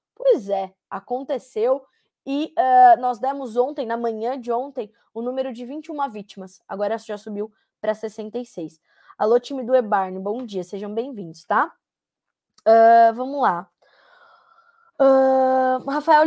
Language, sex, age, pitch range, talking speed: Portuguese, female, 20-39, 230-290 Hz, 135 wpm